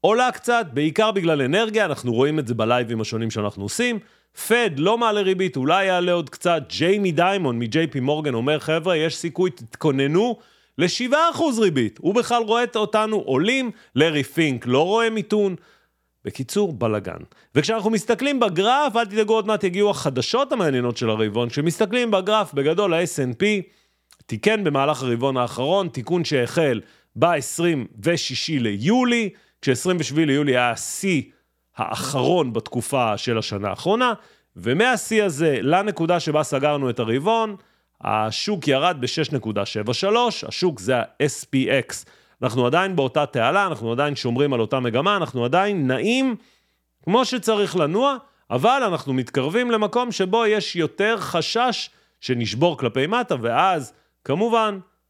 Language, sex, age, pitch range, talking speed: Hebrew, male, 40-59, 130-215 Hz, 130 wpm